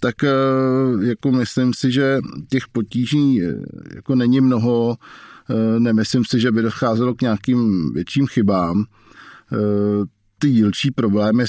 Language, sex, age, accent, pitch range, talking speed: Czech, male, 50-69, native, 105-115 Hz, 105 wpm